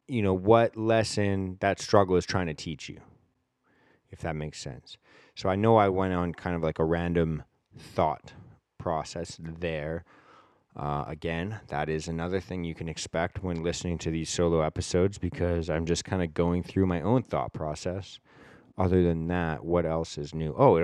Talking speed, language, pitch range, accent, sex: 180 wpm, English, 85-100 Hz, American, male